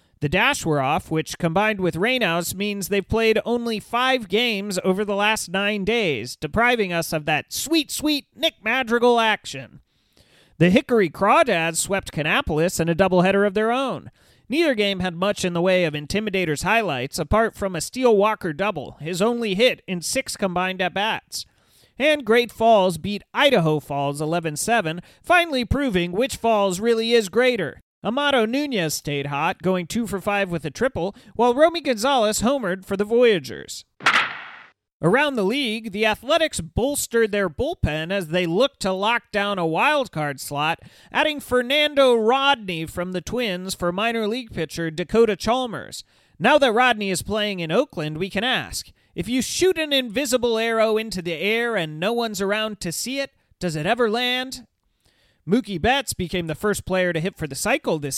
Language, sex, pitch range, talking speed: English, male, 175-235 Hz, 170 wpm